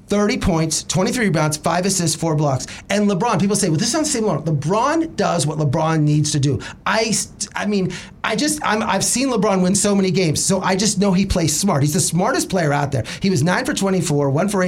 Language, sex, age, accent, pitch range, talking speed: English, male, 30-49, American, 145-195 Hz, 220 wpm